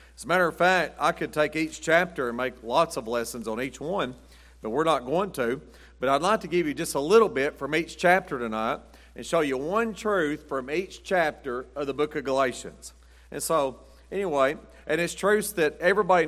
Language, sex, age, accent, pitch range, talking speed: English, male, 40-59, American, 120-165 Hz, 215 wpm